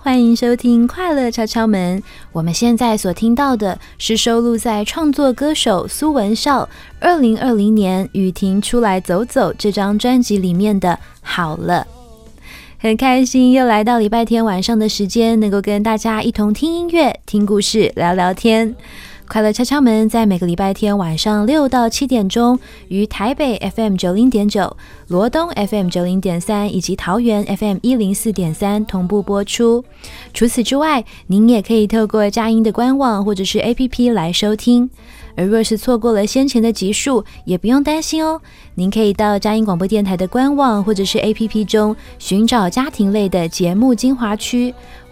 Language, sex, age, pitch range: Chinese, female, 20-39, 200-240 Hz